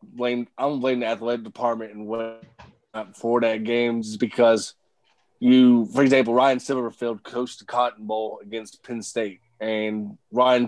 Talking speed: 145 wpm